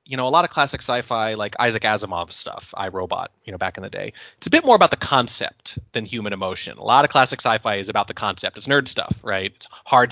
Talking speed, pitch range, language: 255 wpm, 105-140 Hz, English